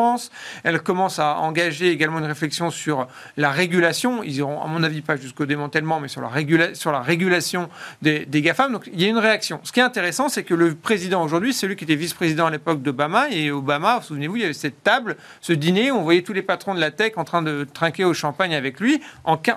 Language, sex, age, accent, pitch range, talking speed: French, male, 40-59, French, 160-210 Hz, 240 wpm